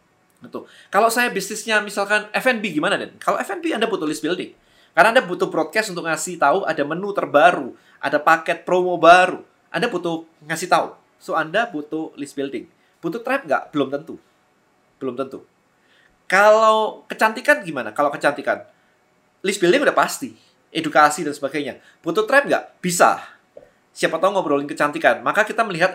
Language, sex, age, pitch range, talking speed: Indonesian, male, 20-39, 150-210 Hz, 155 wpm